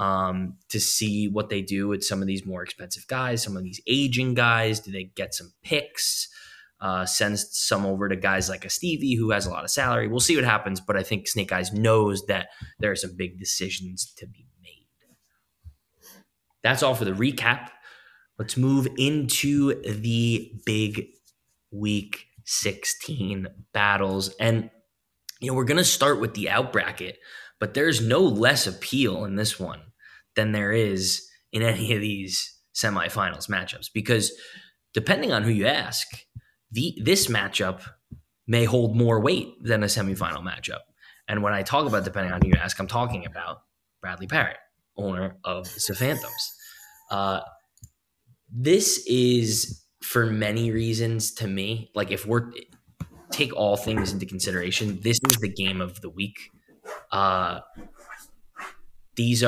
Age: 20-39